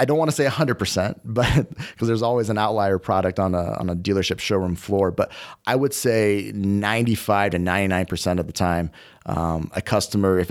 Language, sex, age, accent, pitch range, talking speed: English, male, 30-49, American, 90-115 Hz, 195 wpm